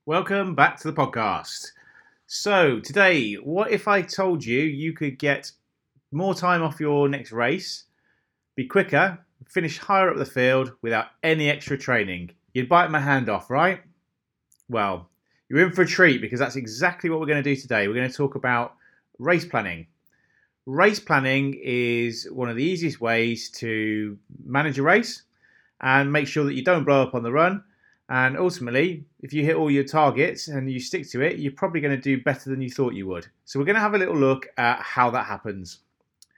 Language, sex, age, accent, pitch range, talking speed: English, male, 30-49, British, 130-170 Hz, 190 wpm